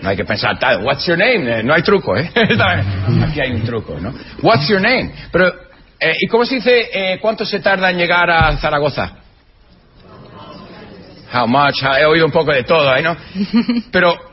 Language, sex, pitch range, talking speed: English, male, 155-220 Hz, 185 wpm